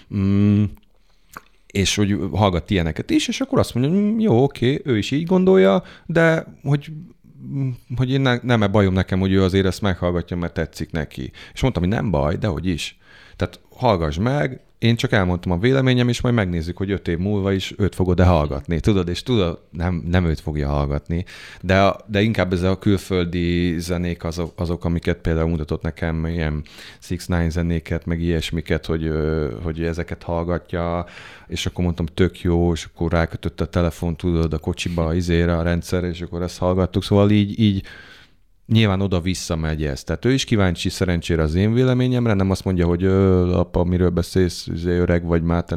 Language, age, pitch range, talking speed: Hungarian, 30-49, 80-105 Hz, 180 wpm